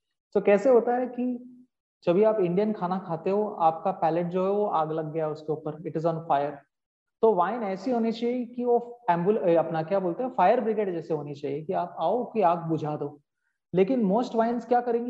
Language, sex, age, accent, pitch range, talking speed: Hindi, male, 30-49, native, 165-220 Hz, 95 wpm